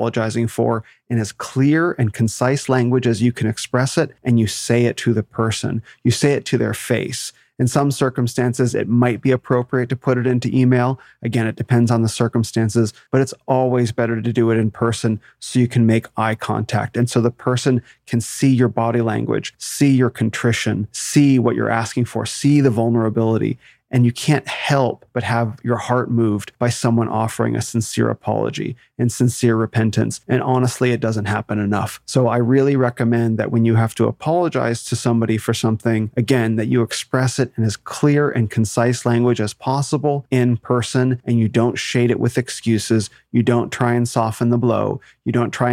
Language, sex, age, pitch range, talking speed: English, male, 30-49, 115-125 Hz, 195 wpm